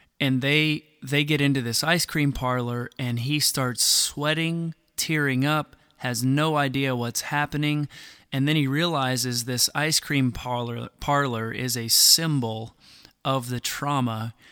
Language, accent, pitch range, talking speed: English, American, 130-155 Hz, 145 wpm